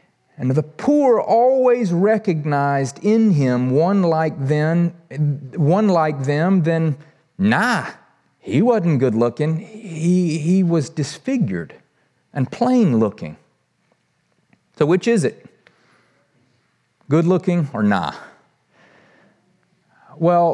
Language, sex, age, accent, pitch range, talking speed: English, male, 40-59, American, 135-170 Hz, 100 wpm